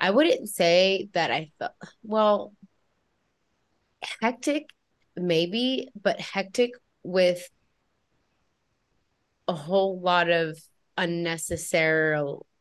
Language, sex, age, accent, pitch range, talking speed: English, female, 20-39, American, 160-190 Hz, 80 wpm